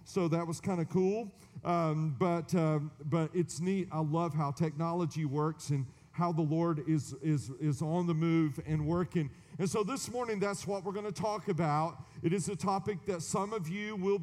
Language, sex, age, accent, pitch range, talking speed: English, male, 40-59, American, 155-200 Hz, 200 wpm